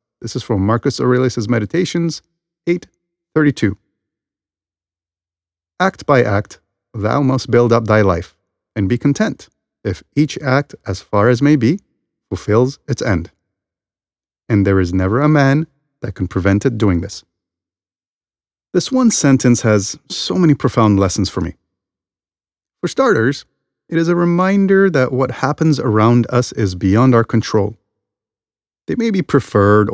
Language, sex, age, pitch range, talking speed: English, male, 30-49, 100-145 Hz, 140 wpm